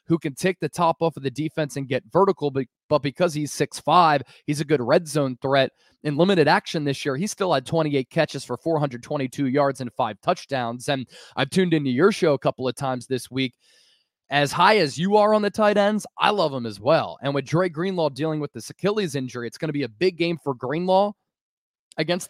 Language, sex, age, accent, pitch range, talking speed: English, male, 20-39, American, 140-175 Hz, 225 wpm